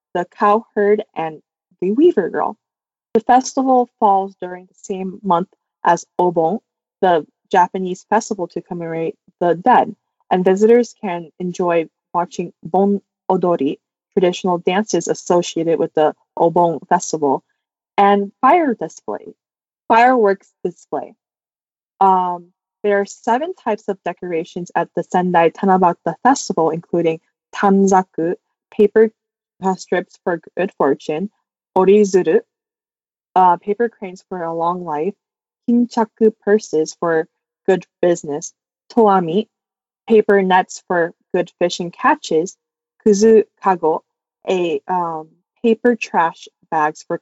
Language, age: Japanese, 20-39